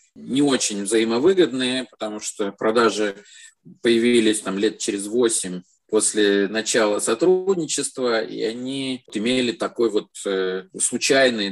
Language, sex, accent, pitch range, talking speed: Russian, male, native, 100-125 Hz, 105 wpm